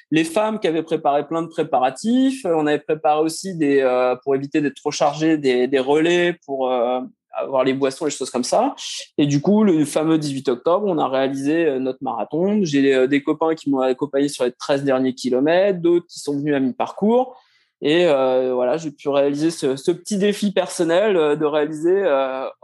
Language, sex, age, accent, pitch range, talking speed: French, male, 20-39, French, 135-165 Hz, 205 wpm